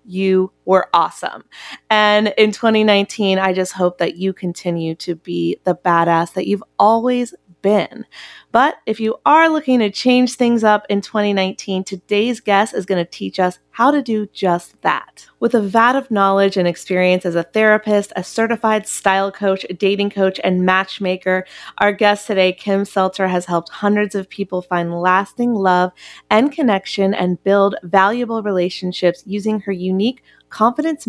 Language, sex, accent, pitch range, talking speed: English, female, American, 185-215 Hz, 165 wpm